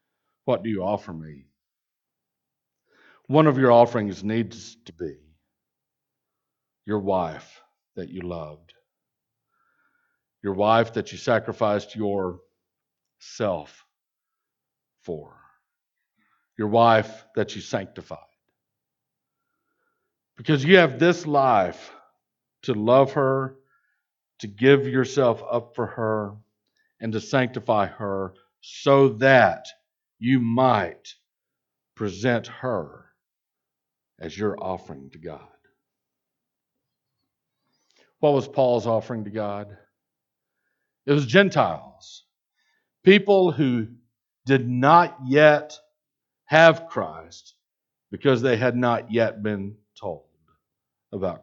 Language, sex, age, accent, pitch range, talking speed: English, male, 60-79, American, 105-150 Hz, 95 wpm